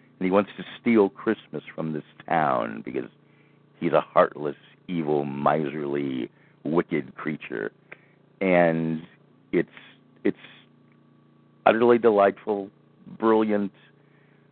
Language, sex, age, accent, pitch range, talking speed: English, male, 60-79, American, 80-110 Hz, 95 wpm